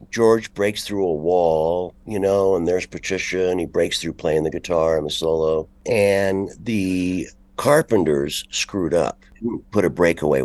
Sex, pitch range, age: male, 80-115 Hz, 60-79